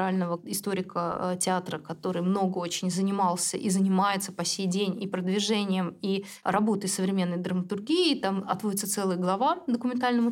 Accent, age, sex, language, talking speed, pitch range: native, 20-39, female, Russian, 130 wpm, 190-245 Hz